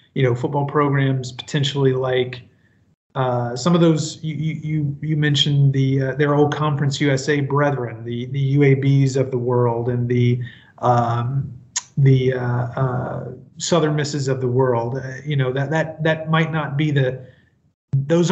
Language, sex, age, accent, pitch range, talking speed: English, male, 30-49, American, 130-155 Hz, 160 wpm